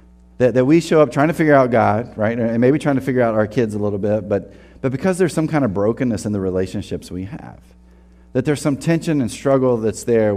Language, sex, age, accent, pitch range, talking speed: English, male, 30-49, American, 100-130 Hz, 245 wpm